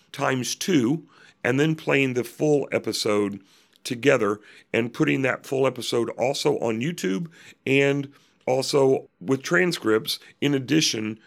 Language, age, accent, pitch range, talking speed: English, 40-59, American, 120-145 Hz, 120 wpm